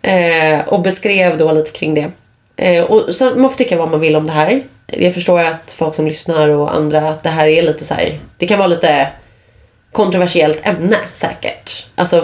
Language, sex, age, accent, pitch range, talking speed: Swedish, female, 30-49, native, 155-200 Hz, 195 wpm